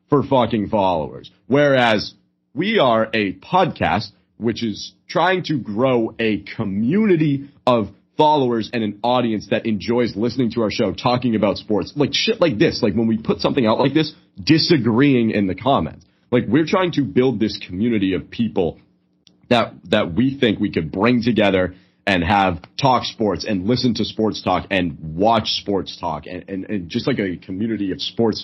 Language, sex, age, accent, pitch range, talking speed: English, male, 30-49, American, 90-120 Hz, 175 wpm